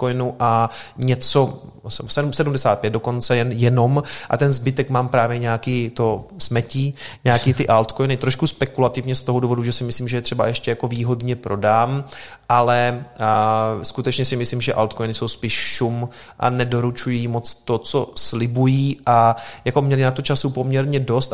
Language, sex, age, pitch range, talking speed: Czech, male, 30-49, 110-130 Hz, 155 wpm